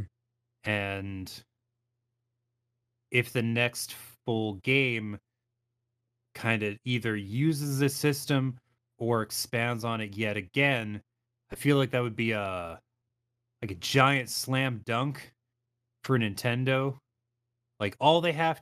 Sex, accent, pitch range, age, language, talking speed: male, American, 110-135 Hz, 30-49, English, 115 wpm